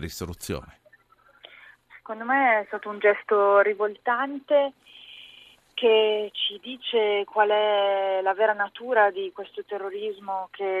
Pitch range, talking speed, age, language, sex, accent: 180-210 Hz, 105 wpm, 20-39, Italian, female, native